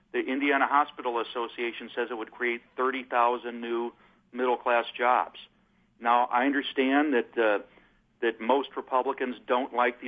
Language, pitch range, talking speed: English, 115-130 Hz, 135 wpm